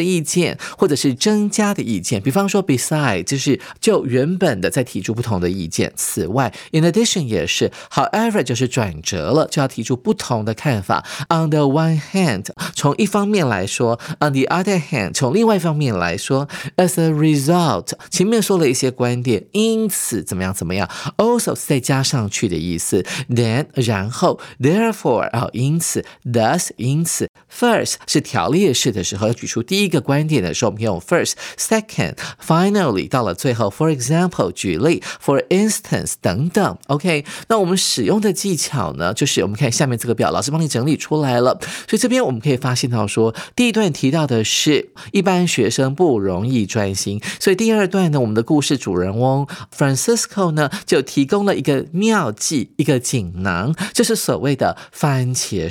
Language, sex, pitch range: Chinese, male, 125-185 Hz